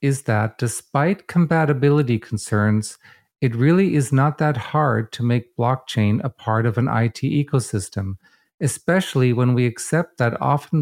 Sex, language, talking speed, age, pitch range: male, English, 145 wpm, 50-69, 115-145 Hz